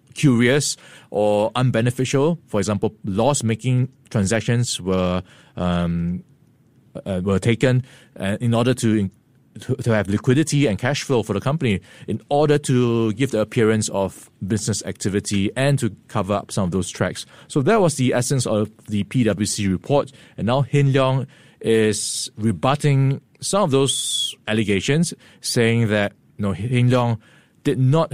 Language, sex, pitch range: English, male, 100-130 Hz